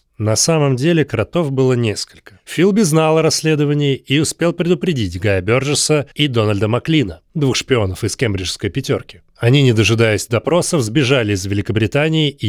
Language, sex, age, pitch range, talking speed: Russian, male, 30-49, 110-155 Hz, 145 wpm